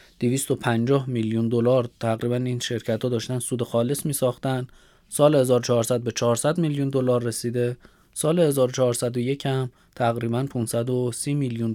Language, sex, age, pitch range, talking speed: Persian, male, 20-39, 120-140 Hz, 135 wpm